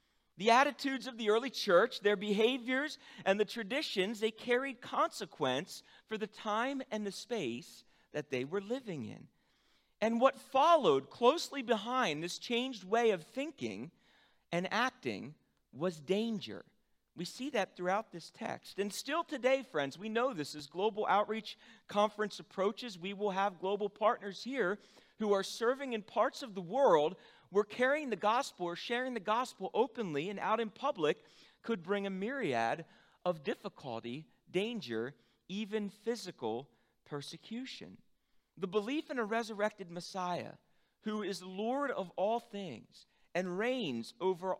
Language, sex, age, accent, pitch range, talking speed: English, male, 40-59, American, 180-235 Hz, 145 wpm